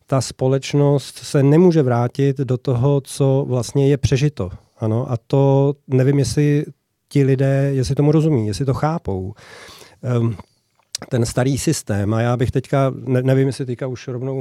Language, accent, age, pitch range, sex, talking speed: Czech, native, 40-59, 125-155 Hz, male, 140 wpm